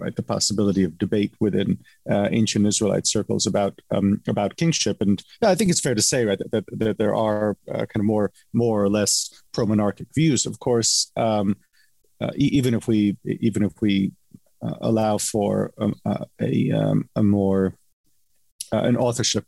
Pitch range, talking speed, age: 105-120 Hz, 185 wpm, 40-59